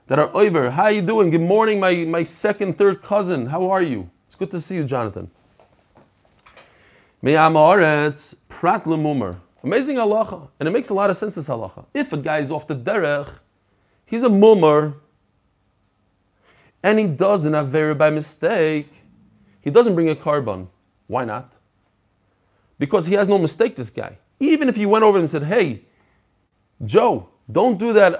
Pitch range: 140-215 Hz